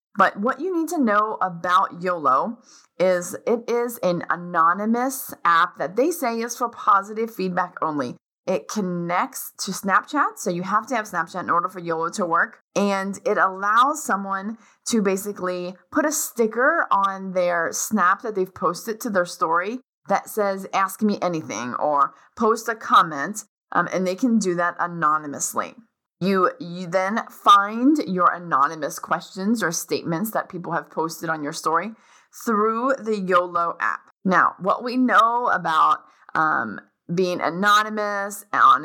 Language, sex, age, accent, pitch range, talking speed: English, female, 30-49, American, 180-235 Hz, 155 wpm